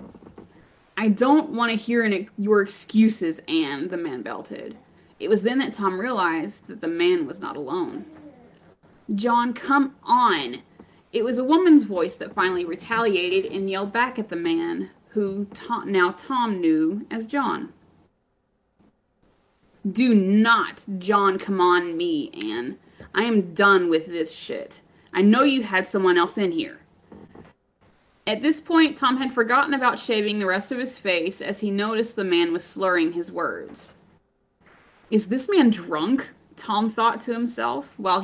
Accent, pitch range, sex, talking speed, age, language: American, 195-265 Hz, female, 155 wpm, 20-39, English